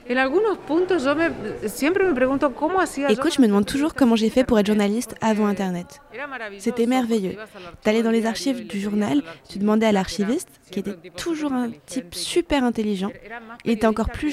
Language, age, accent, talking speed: French, 20-39, French, 160 wpm